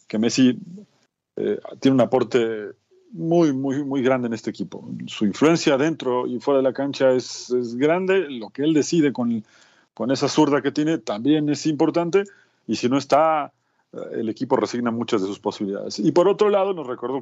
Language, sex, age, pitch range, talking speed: Spanish, male, 40-59, 120-155 Hz, 190 wpm